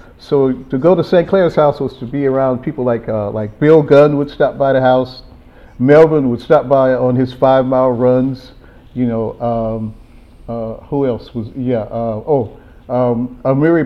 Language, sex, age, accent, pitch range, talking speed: English, male, 50-69, American, 120-140 Hz, 185 wpm